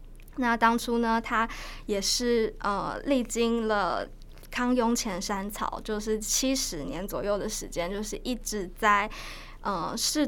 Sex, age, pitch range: female, 20-39, 195-230 Hz